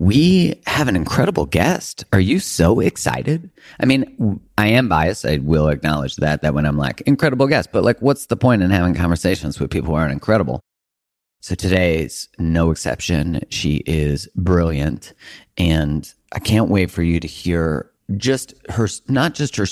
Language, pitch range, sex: English, 80-105 Hz, male